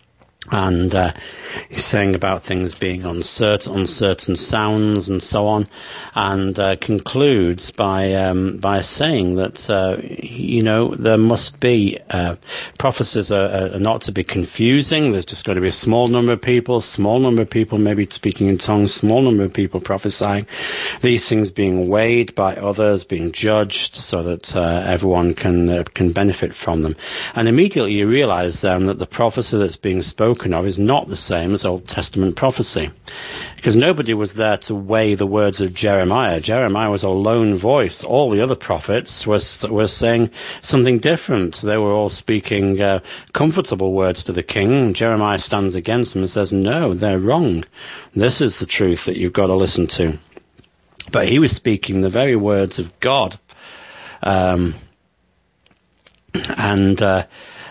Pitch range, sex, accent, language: 95-110 Hz, male, British, English